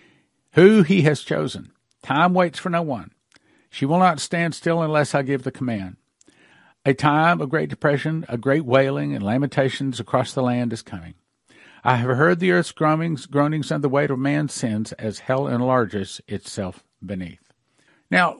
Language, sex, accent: English, male, American